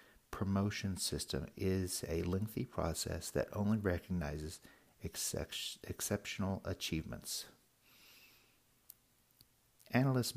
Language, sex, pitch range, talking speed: English, male, 80-100 Hz, 70 wpm